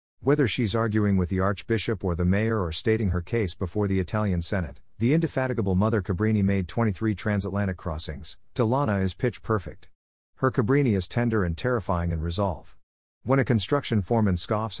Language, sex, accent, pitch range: English, male, American, 90-115 Hz